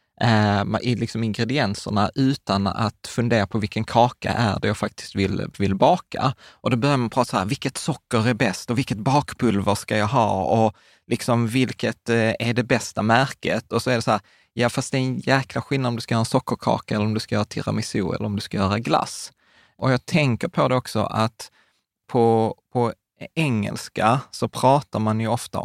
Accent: native